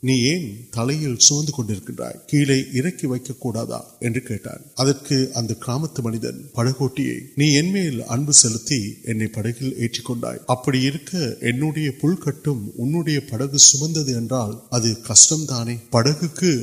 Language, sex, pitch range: Urdu, male, 110-140 Hz